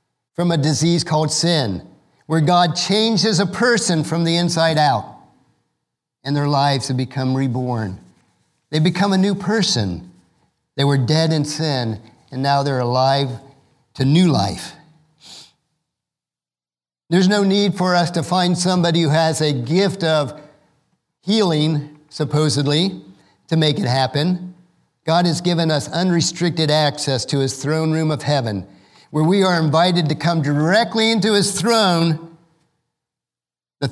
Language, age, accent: English, 50-69, American